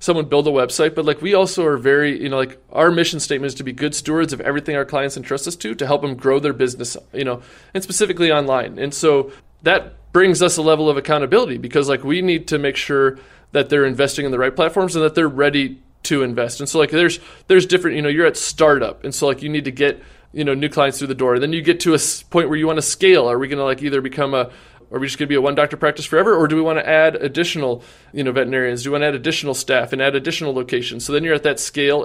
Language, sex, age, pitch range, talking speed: English, male, 20-39, 130-155 Hz, 280 wpm